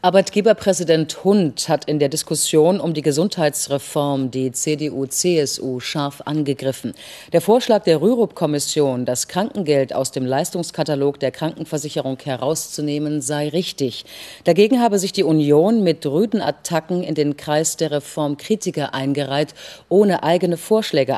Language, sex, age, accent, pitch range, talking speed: German, female, 40-59, German, 145-190 Hz, 125 wpm